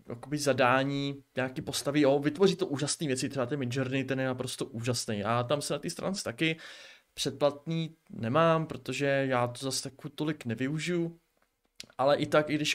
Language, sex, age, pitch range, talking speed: Czech, male, 20-39, 130-155 Hz, 175 wpm